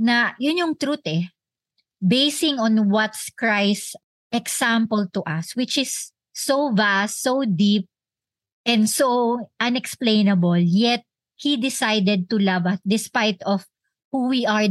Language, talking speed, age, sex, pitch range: Filipino, 130 wpm, 50-69, male, 190-250 Hz